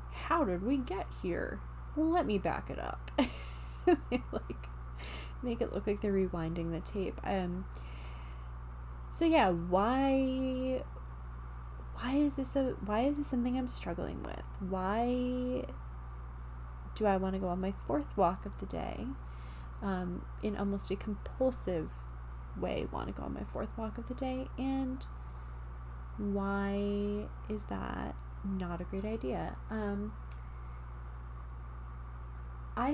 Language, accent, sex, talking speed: English, American, female, 135 wpm